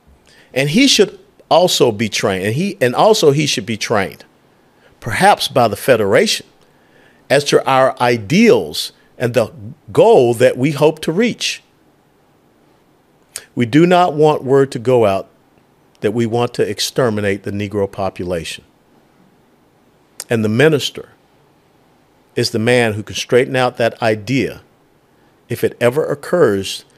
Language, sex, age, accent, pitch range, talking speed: English, male, 50-69, American, 100-145 Hz, 140 wpm